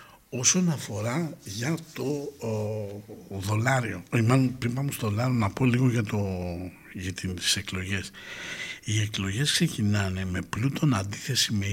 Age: 60-79